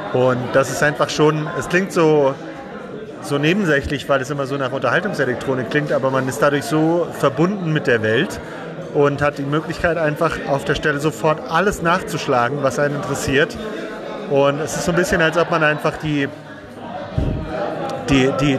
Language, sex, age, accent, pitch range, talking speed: German, male, 30-49, German, 140-170 Hz, 170 wpm